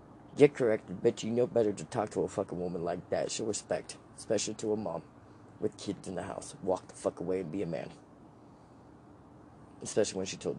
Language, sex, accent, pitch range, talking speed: English, male, American, 105-150 Hz, 210 wpm